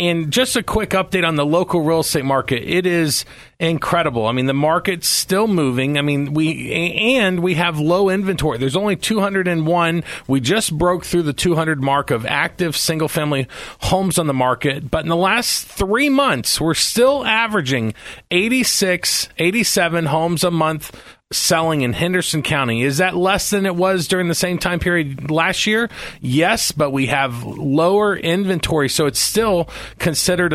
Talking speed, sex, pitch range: 170 wpm, male, 140-175 Hz